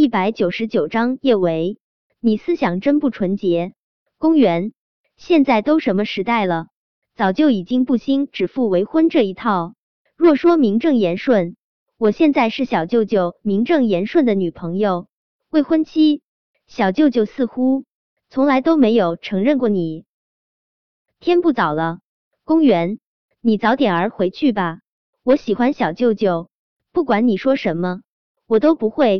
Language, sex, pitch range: Chinese, male, 190-275 Hz